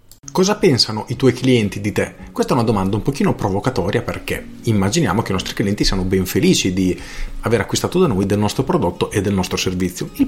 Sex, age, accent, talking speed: male, 40-59, native, 210 wpm